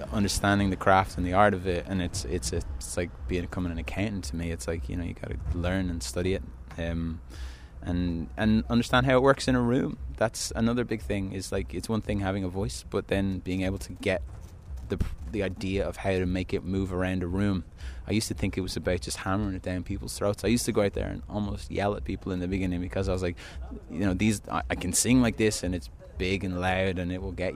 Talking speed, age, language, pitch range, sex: 260 wpm, 20-39, English, 85-100 Hz, male